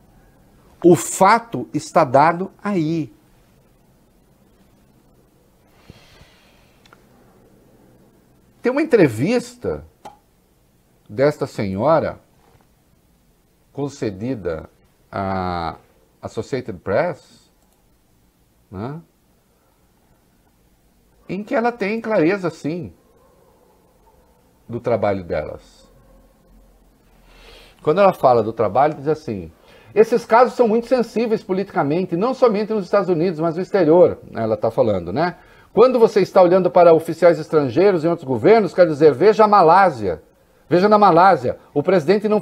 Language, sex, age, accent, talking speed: English, male, 60-79, Brazilian, 100 wpm